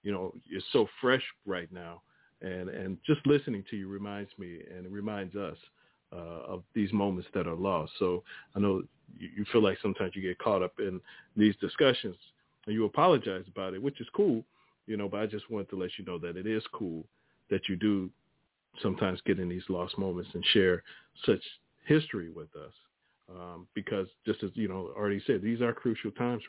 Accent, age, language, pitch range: American, 40-59, English, 95-115 Hz